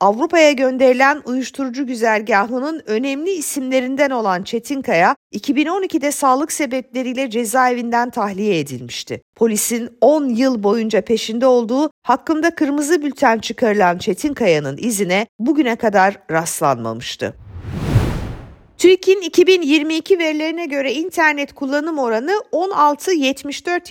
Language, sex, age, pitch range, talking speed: Turkish, female, 50-69, 215-295 Hz, 95 wpm